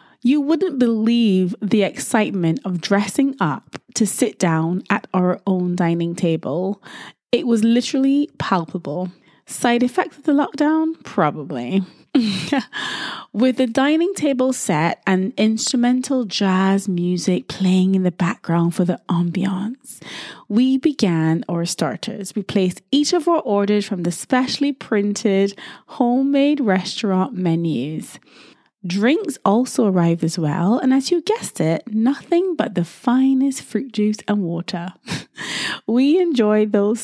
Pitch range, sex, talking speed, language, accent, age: 180-255 Hz, female, 130 wpm, English, British, 20-39